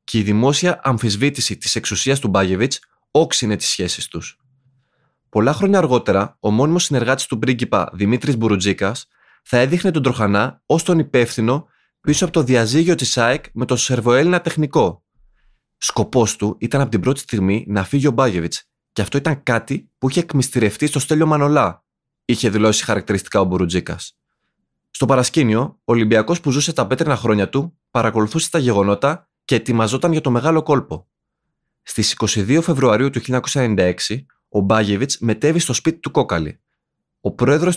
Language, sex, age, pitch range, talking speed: Greek, male, 20-39, 110-150 Hz, 155 wpm